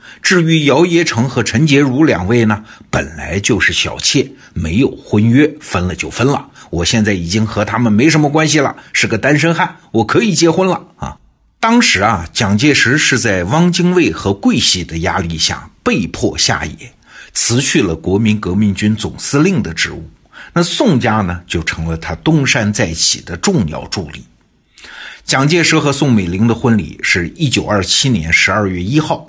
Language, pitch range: Chinese, 90-140 Hz